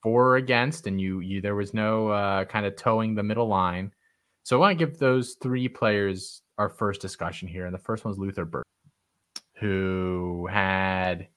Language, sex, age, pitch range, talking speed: English, male, 20-39, 95-110 Hz, 190 wpm